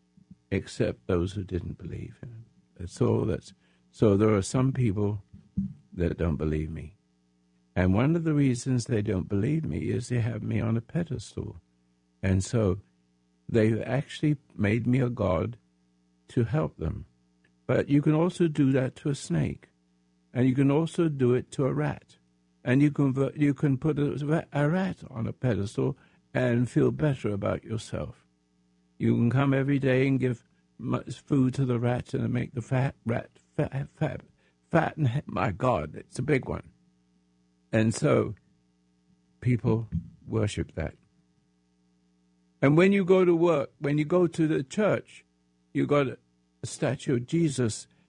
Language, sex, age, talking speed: English, male, 60-79, 155 wpm